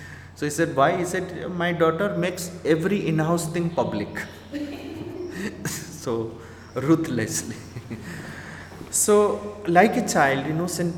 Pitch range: 105-165 Hz